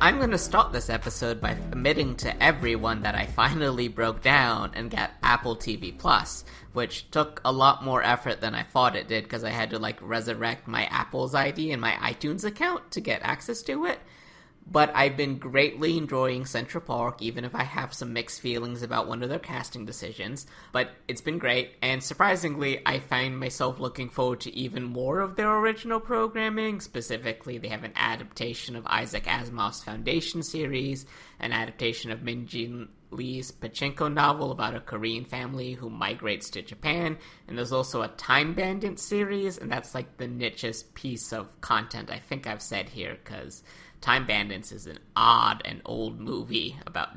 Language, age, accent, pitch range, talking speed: English, 20-39, American, 115-145 Hz, 180 wpm